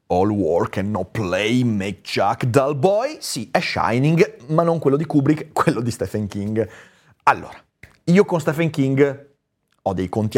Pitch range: 115-145 Hz